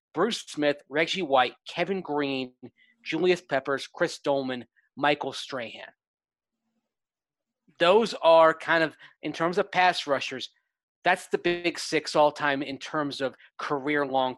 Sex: male